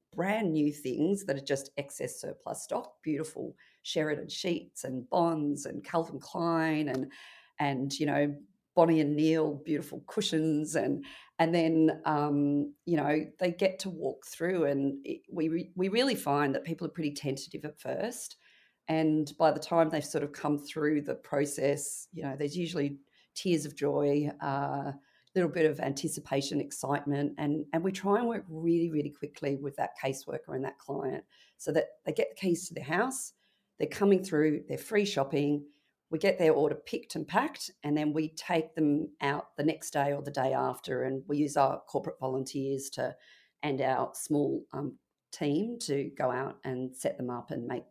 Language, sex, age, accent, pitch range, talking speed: English, female, 40-59, Australian, 140-165 Hz, 180 wpm